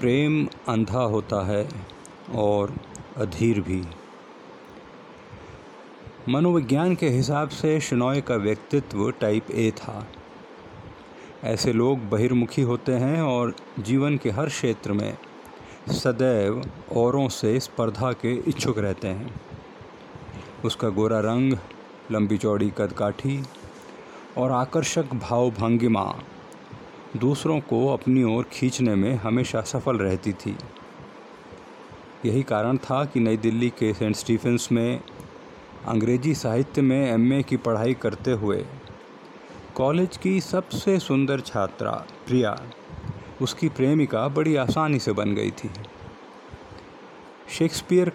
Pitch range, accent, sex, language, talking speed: 110-140 Hz, Indian, male, English, 110 wpm